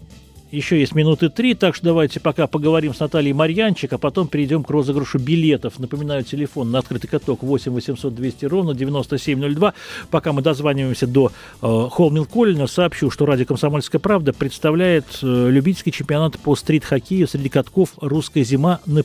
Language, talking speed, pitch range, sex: Russian, 160 wpm, 135-175 Hz, male